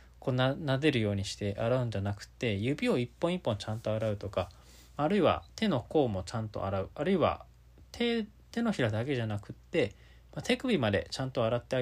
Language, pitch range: Japanese, 105-160 Hz